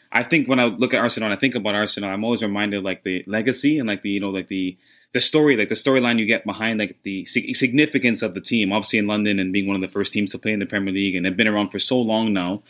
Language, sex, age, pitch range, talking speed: English, male, 20-39, 100-130 Hz, 300 wpm